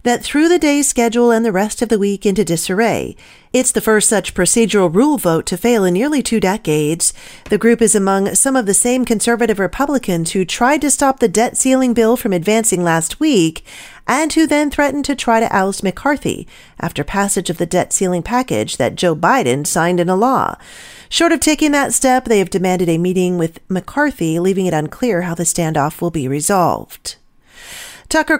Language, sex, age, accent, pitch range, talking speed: English, female, 40-59, American, 180-260 Hz, 195 wpm